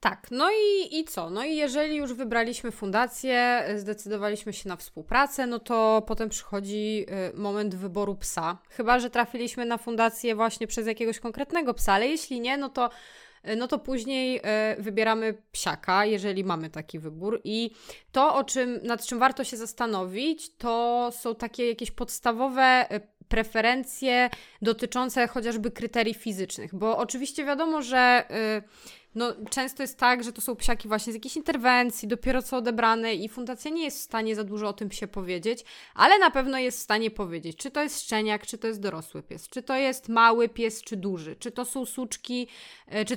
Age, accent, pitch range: 20-39, native, 215-255 Hz